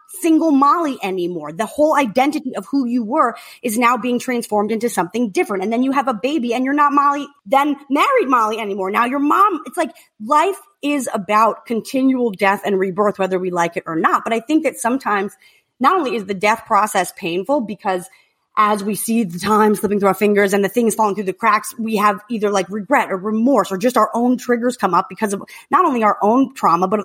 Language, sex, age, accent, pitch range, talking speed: English, female, 30-49, American, 200-280 Hz, 220 wpm